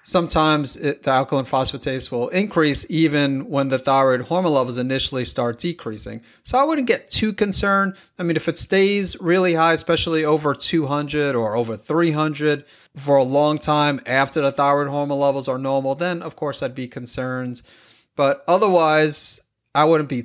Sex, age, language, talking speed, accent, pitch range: male, 30-49, English, 165 wpm, American, 130-160 Hz